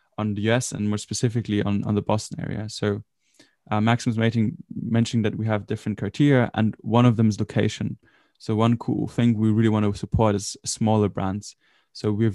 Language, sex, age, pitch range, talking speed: English, male, 10-29, 105-115 Hz, 200 wpm